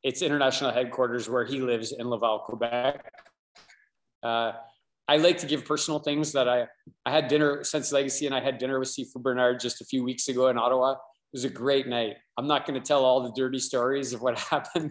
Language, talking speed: English, 215 wpm